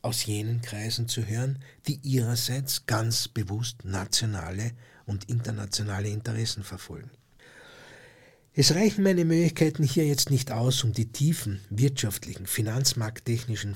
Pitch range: 110-135 Hz